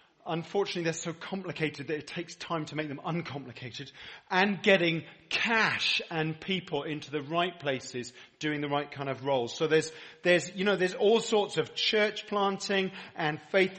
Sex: male